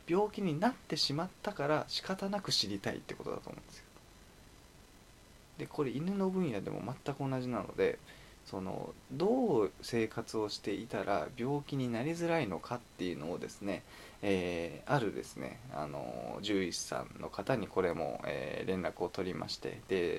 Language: Japanese